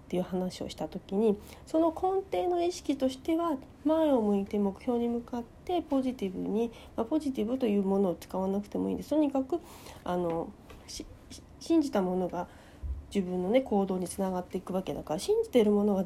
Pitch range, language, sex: 185-270 Hz, Japanese, female